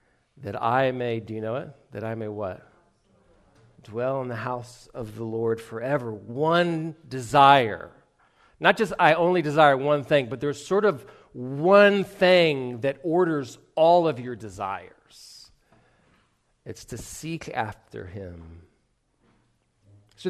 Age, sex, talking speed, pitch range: 40-59, male, 135 wpm, 110-150 Hz